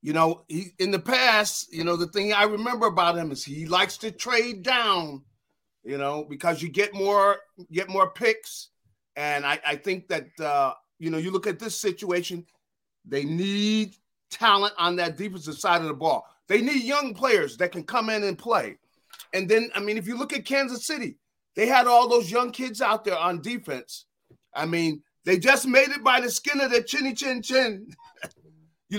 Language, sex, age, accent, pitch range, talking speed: English, male, 40-59, American, 175-235 Hz, 200 wpm